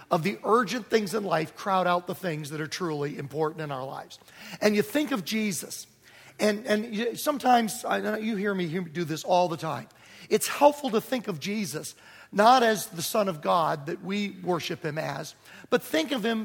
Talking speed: 195 wpm